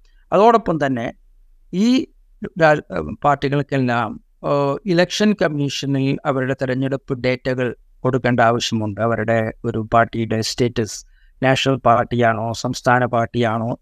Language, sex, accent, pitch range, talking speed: Malayalam, male, native, 125-145 Hz, 85 wpm